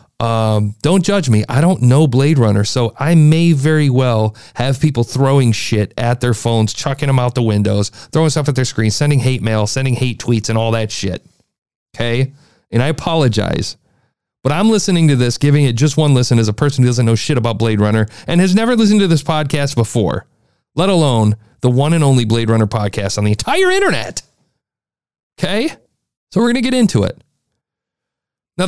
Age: 40-59